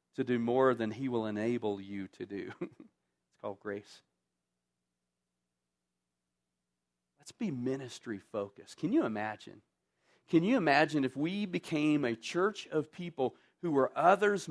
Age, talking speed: 40-59, 135 wpm